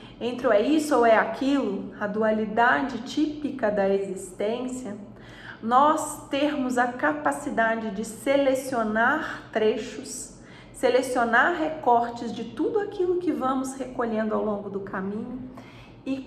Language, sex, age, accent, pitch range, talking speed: Portuguese, female, 30-49, Brazilian, 205-270 Hz, 120 wpm